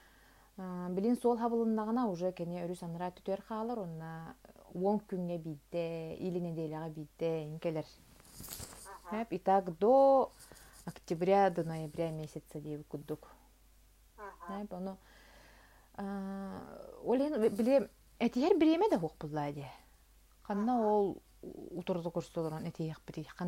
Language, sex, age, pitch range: Russian, female, 30-49, 165-210 Hz